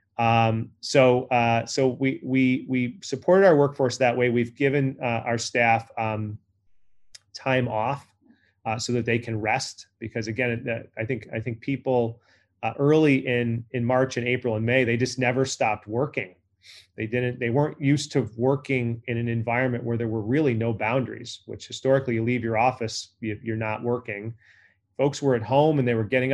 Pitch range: 110-130 Hz